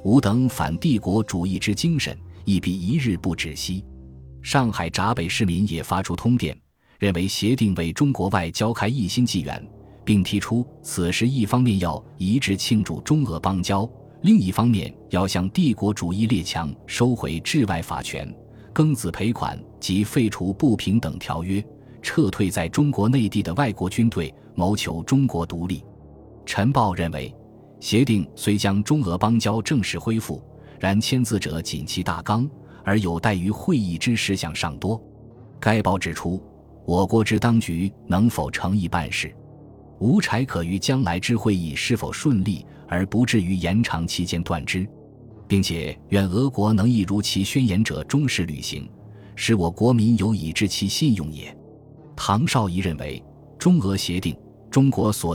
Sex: male